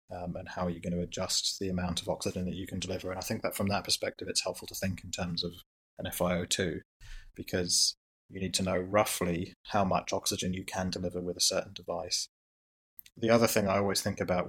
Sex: male